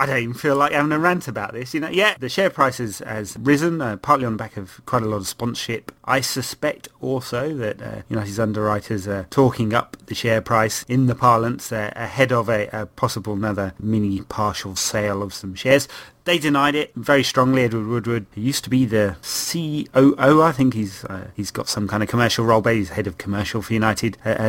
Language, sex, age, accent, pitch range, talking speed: English, male, 30-49, British, 110-140 Hz, 220 wpm